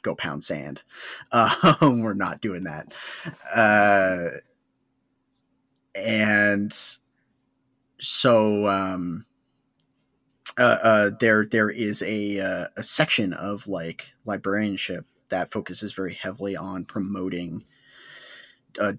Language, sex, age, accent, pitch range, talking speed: English, male, 30-49, American, 95-110 Hz, 100 wpm